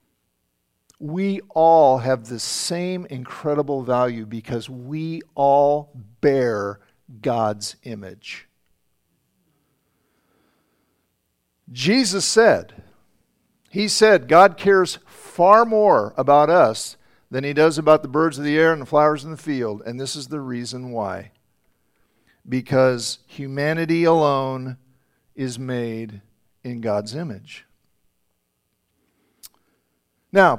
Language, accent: English, American